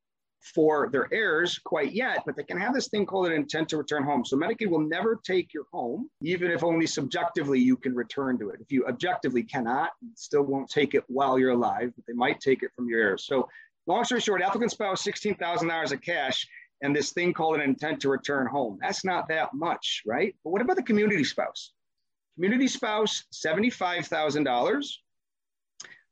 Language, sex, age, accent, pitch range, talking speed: English, male, 30-49, American, 145-215 Hz, 195 wpm